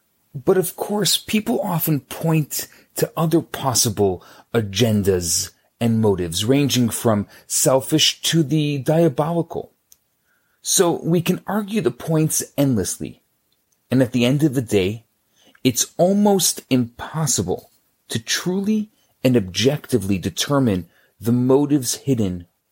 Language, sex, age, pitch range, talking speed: English, male, 30-49, 115-165 Hz, 115 wpm